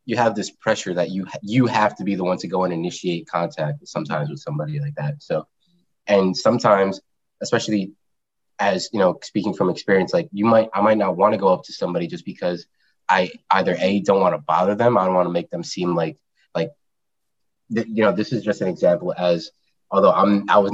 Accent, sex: American, male